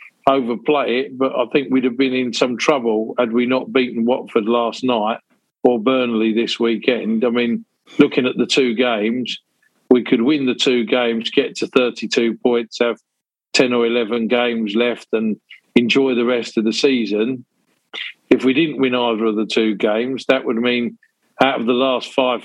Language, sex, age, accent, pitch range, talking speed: English, male, 50-69, British, 115-130 Hz, 185 wpm